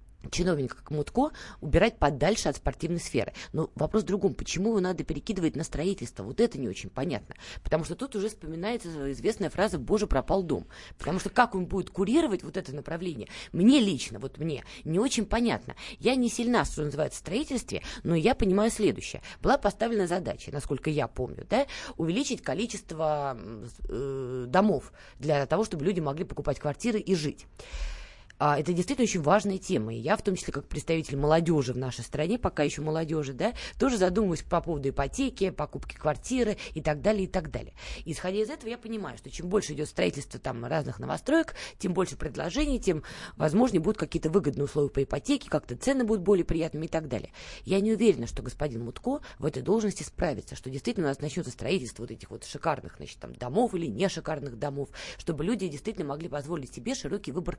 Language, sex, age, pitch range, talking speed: Russian, female, 20-39, 145-210 Hz, 190 wpm